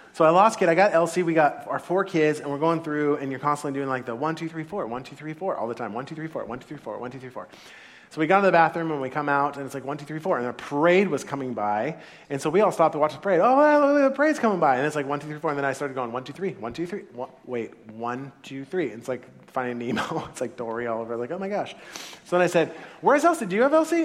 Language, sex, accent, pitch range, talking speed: English, male, American, 140-190 Hz, 320 wpm